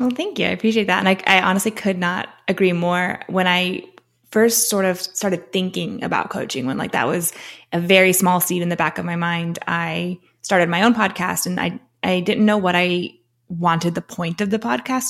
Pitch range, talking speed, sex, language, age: 170-195 Hz, 220 wpm, female, English, 20-39